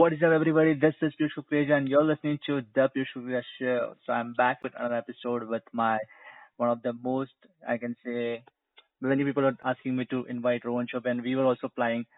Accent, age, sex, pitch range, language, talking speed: native, 20-39, male, 120-135 Hz, Hindi, 220 wpm